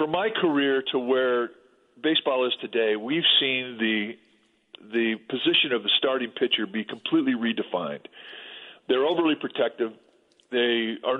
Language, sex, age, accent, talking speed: English, male, 50-69, American, 135 wpm